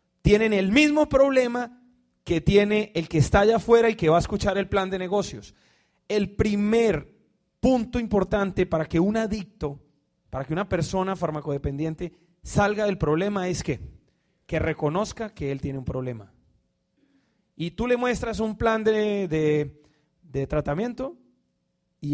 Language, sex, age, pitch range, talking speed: Spanish, male, 30-49, 155-225 Hz, 150 wpm